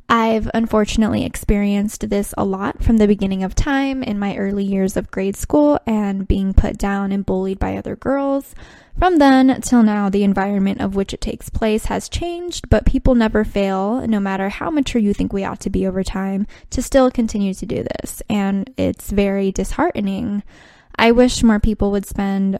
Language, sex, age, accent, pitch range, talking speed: English, female, 10-29, American, 195-235 Hz, 190 wpm